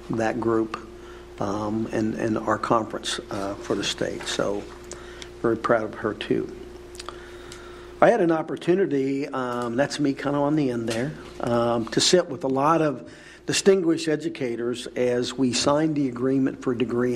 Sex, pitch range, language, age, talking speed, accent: male, 120-140 Hz, English, 50-69, 165 wpm, American